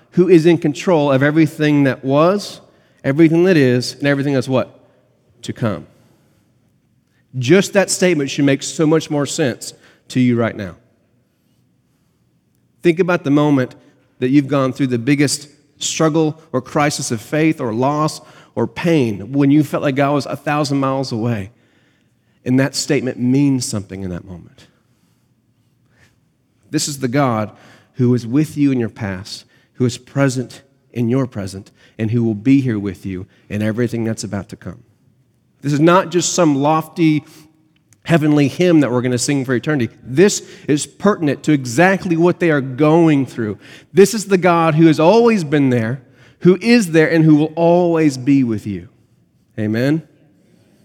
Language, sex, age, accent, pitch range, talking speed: English, male, 40-59, American, 120-160 Hz, 170 wpm